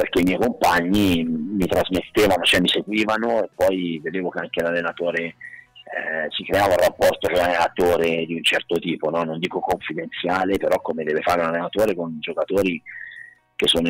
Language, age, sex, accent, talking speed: Italian, 40-59, male, native, 175 wpm